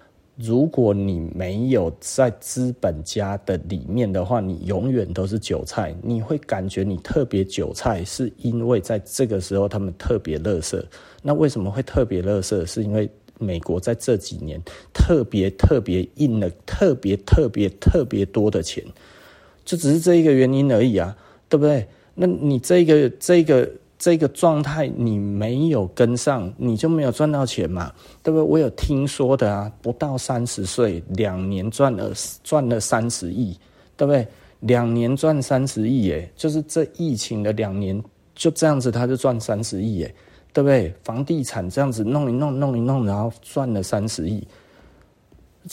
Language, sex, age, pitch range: Chinese, male, 30-49, 100-140 Hz